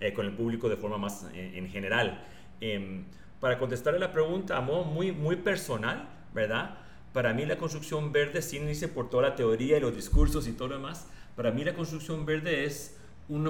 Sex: male